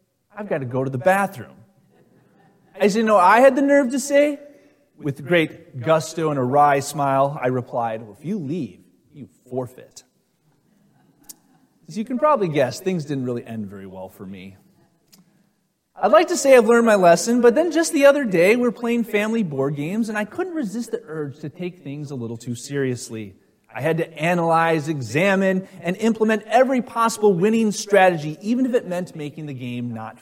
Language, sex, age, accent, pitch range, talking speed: English, male, 30-49, American, 135-210 Hz, 185 wpm